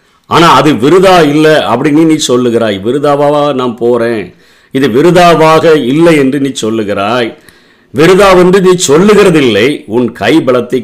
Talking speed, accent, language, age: 125 wpm, native, Tamil, 50-69